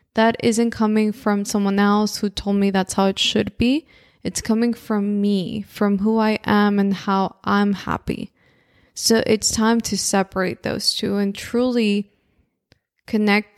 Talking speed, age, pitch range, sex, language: 160 wpm, 20-39, 200-235 Hz, female, English